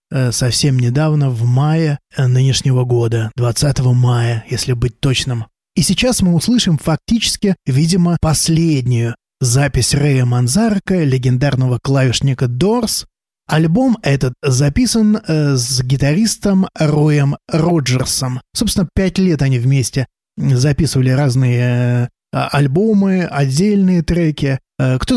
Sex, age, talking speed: male, 20-39, 100 wpm